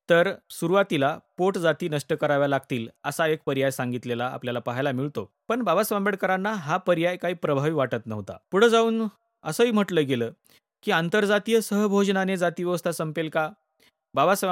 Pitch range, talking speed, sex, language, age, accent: 140-195 Hz, 150 wpm, male, Marathi, 30-49, native